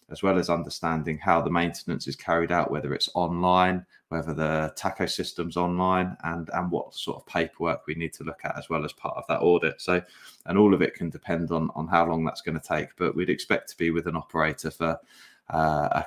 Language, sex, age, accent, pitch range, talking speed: English, male, 20-39, British, 80-90 Hz, 230 wpm